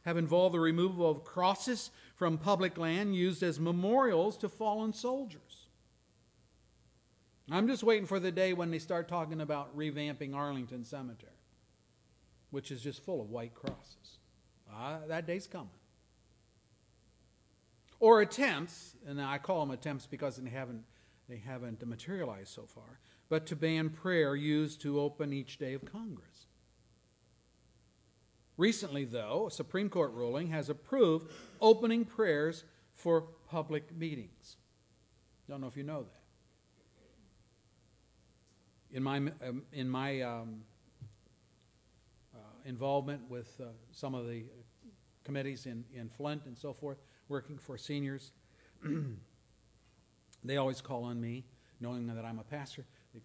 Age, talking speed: 50-69, 135 wpm